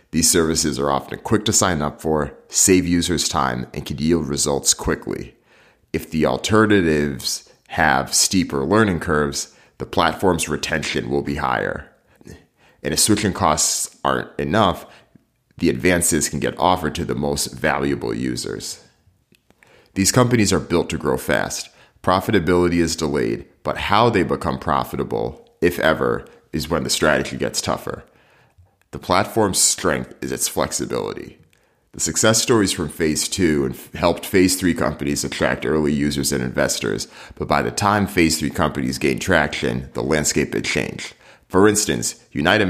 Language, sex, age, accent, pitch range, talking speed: English, male, 30-49, American, 70-90 Hz, 150 wpm